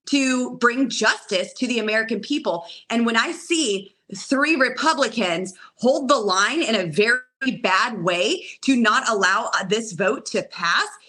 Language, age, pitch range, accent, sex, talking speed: English, 30-49, 210-255 Hz, American, female, 150 wpm